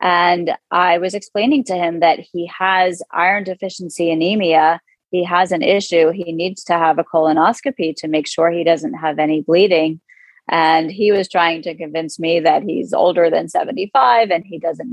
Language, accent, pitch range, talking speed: English, American, 165-195 Hz, 180 wpm